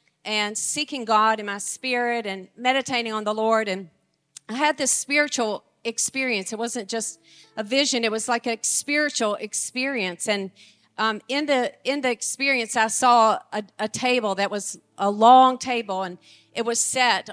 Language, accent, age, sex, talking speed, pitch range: English, American, 40-59, female, 170 wpm, 210-265 Hz